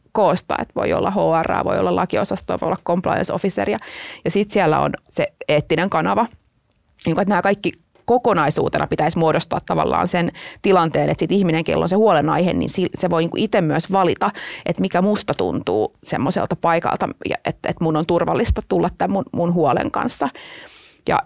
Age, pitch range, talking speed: 30-49, 170-205 Hz, 160 wpm